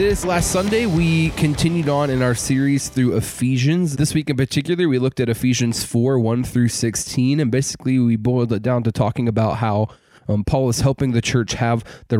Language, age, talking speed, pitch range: English, 20-39, 200 wpm, 110-130 Hz